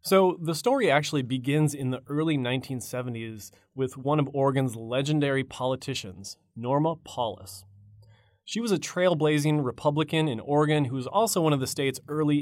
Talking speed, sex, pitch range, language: 155 wpm, male, 120-155 Hz, English